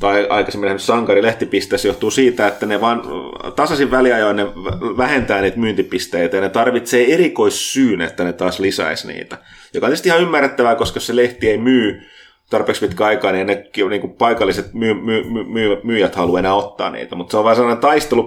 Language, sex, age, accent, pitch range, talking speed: Finnish, male, 30-49, native, 95-125 Hz, 180 wpm